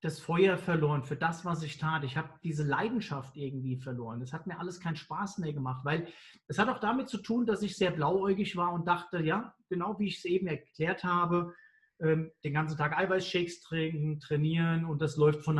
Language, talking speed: German, 210 wpm